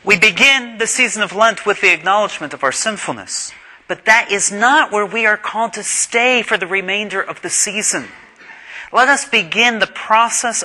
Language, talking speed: English, 185 wpm